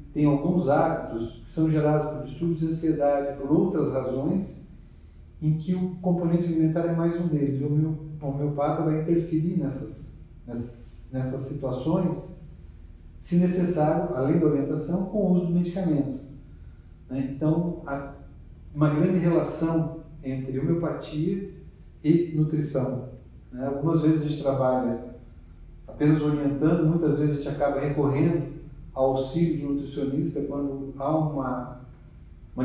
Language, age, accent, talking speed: Portuguese, 40-59, Brazilian, 130 wpm